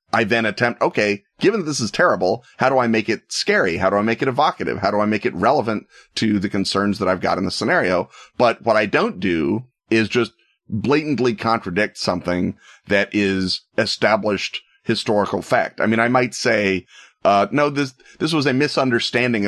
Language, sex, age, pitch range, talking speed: English, male, 30-49, 95-120 Hz, 195 wpm